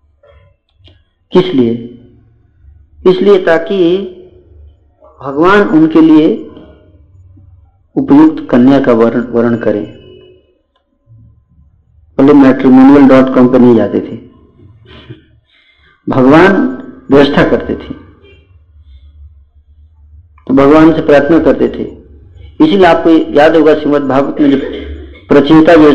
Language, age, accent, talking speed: Hindi, 50-69, native, 80 wpm